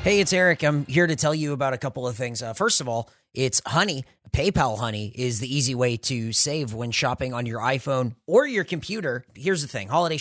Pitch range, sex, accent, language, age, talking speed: 120-160 Hz, male, American, English, 30-49, 230 wpm